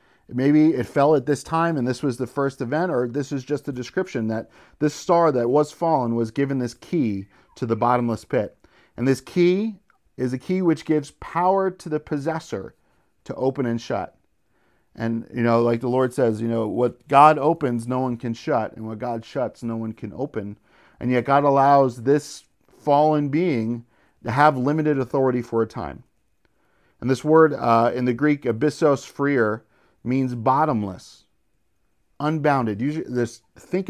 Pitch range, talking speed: 115-150 Hz, 175 wpm